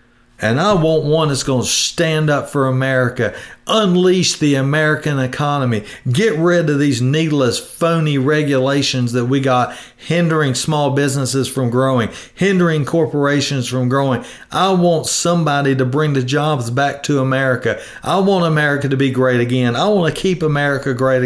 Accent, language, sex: American, English, male